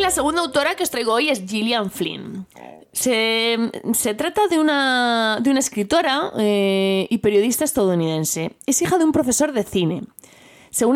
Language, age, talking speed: Spanish, 20-39, 165 wpm